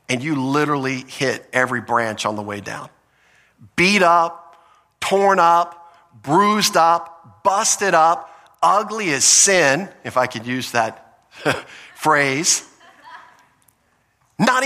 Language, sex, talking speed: English, male, 115 wpm